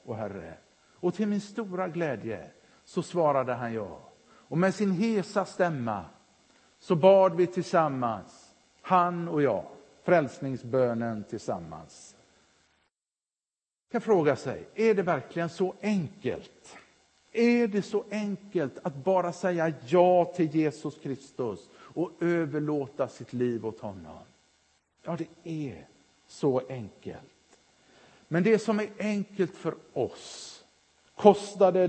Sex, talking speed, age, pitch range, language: male, 120 wpm, 50-69, 125-185 Hz, Swedish